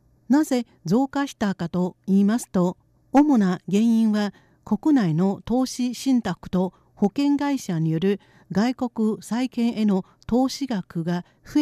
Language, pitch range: Japanese, 175-245 Hz